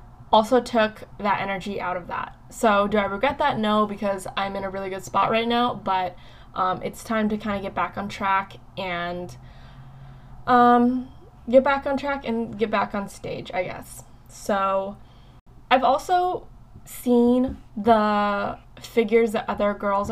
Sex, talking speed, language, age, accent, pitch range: female, 165 wpm, English, 10-29, American, 195-235 Hz